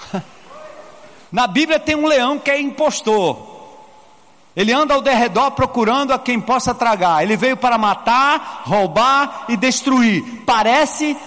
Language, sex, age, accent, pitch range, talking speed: Portuguese, male, 50-69, Brazilian, 220-270 Hz, 135 wpm